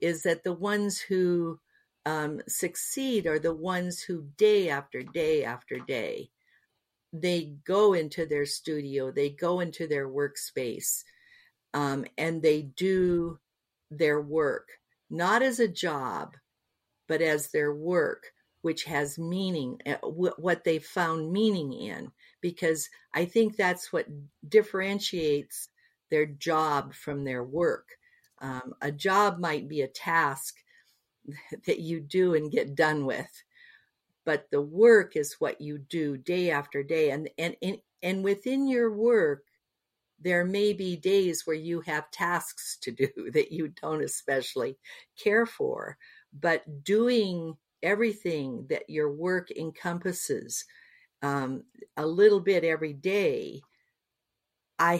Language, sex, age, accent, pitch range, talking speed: English, female, 50-69, American, 150-210 Hz, 130 wpm